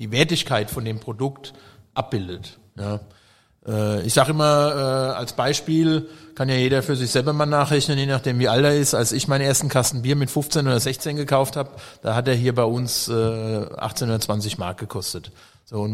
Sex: male